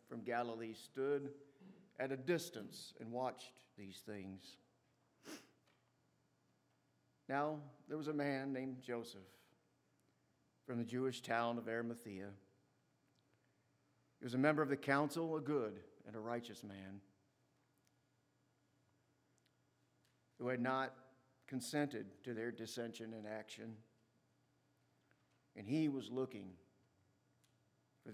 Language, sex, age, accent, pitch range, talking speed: English, male, 50-69, American, 110-140 Hz, 105 wpm